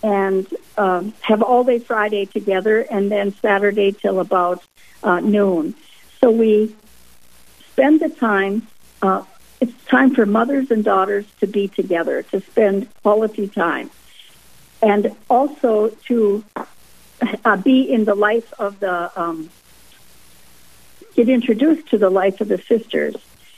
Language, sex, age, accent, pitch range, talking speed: English, female, 60-79, American, 195-240 Hz, 135 wpm